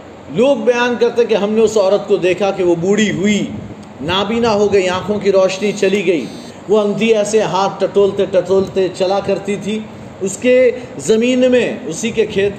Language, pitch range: Urdu, 175-220 Hz